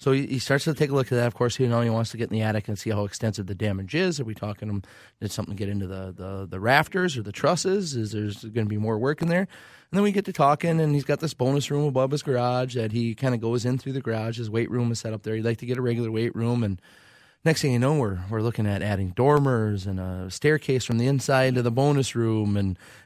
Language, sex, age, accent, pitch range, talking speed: English, male, 30-49, American, 105-135 Hz, 295 wpm